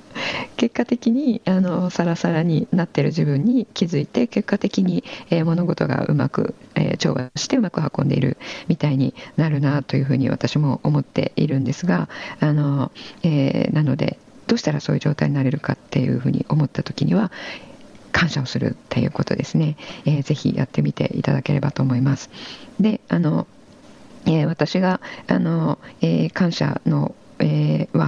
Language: Japanese